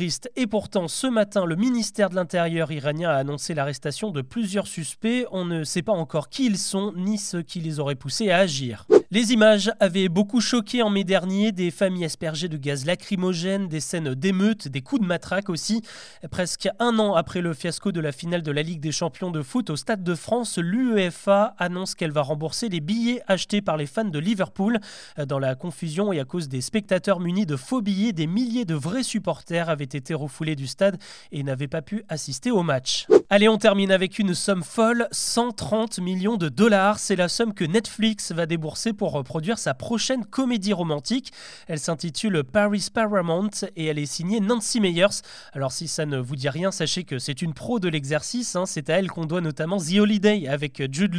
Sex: male